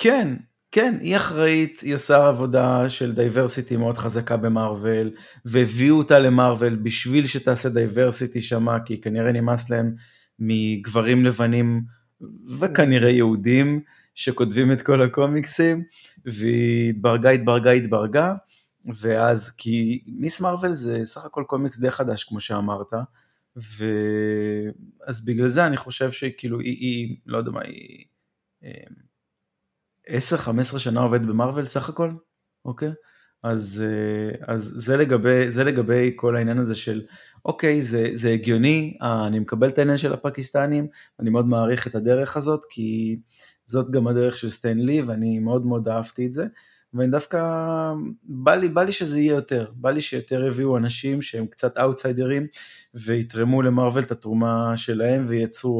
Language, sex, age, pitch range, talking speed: Hebrew, male, 30-49, 115-140 Hz, 140 wpm